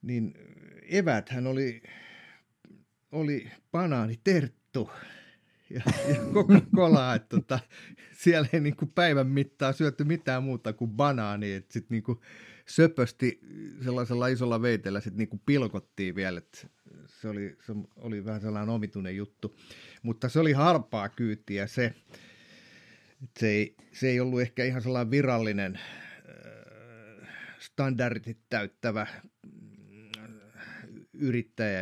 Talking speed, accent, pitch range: 110 wpm, native, 105-130 Hz